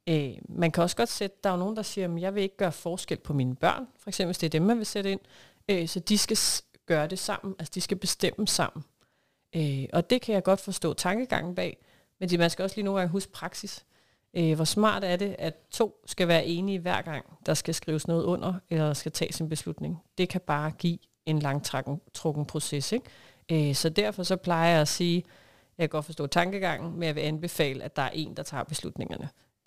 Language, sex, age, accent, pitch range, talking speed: Danish, female, 40-59, native, 155-185 Hz, 240 wpm